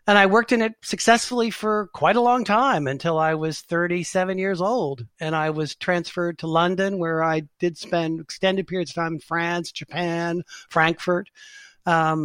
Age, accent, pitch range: 50-69, American, 155-180 Hz